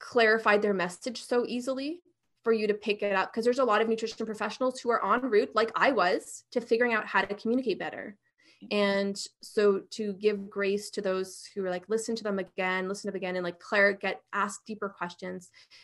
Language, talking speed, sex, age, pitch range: English, 210 wpm, female, 20-39, 195-230 Hz